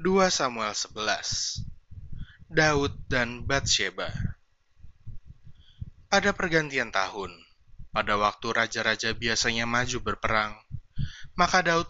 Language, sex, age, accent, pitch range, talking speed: Indonesian, male, 20-39, native, 105-140 Hz, 85 wpm